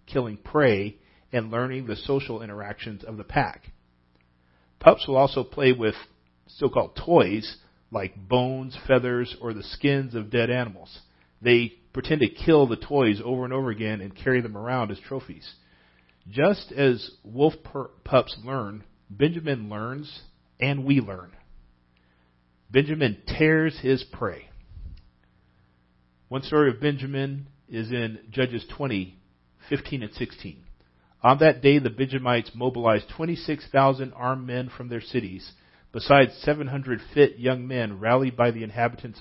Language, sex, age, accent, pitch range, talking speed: English, male, 40-59, American, 95-135 Hz, 135 wpm